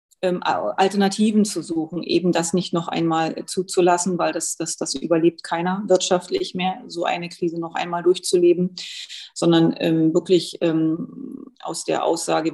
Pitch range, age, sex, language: 165-195 Hz, 30-49, female, German